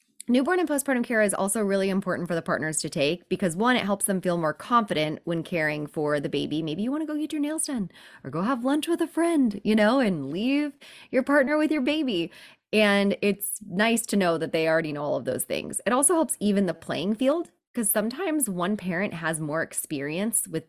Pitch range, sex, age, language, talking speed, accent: 150-220 Hz, female, 20-39, English, 225 wpm, American